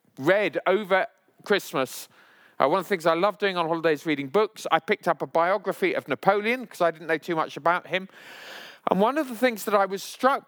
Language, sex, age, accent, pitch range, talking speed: English, male, 40-59, British, 180-225 Hz, 225 wpm